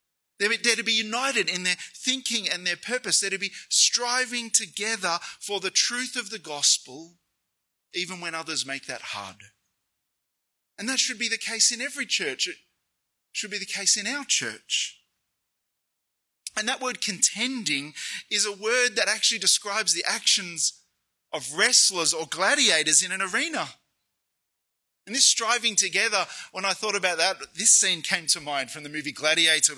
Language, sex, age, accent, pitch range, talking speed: English, male, 30-49, Australian, 150-220 Hz, 165 wpm